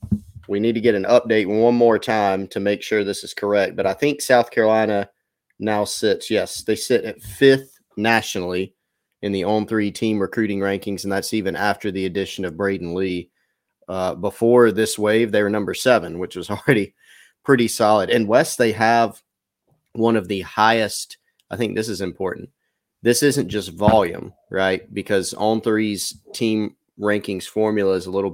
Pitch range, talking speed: 95-110 Hz, 180 wpm